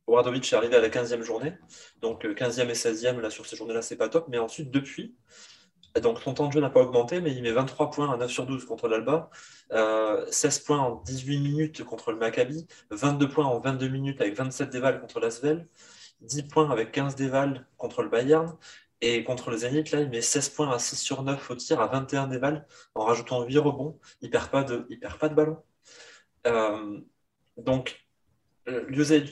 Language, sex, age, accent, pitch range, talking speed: French, male, 20-39, French, 120-155 Hz, 215 wpm